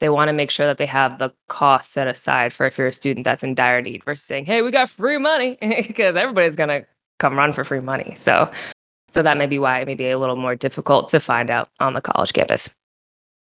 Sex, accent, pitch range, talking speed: female, American, 145-180 Hz, 255 wpm